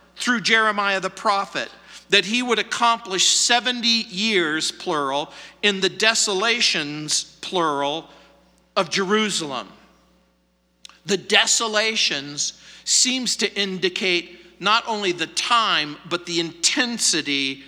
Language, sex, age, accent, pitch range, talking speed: English, male, 50-69, American, 175-235 Hz, 100 wpm